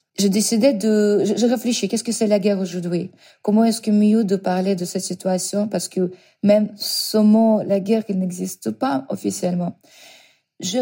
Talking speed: 175 wpm